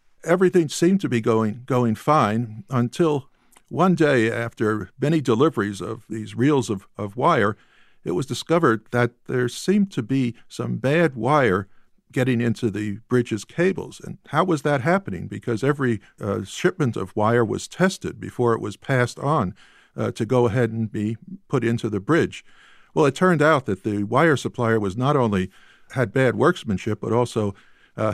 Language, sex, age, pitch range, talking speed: English, male, 50-69, 110-145 Hz, 170 wpm